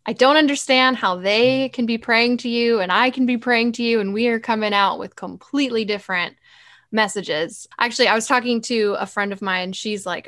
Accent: American